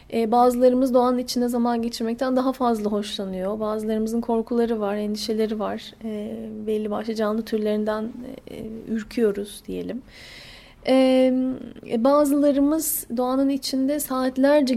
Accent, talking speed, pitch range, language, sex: native, 95 wpm, 220-270 Hz, Turkish, female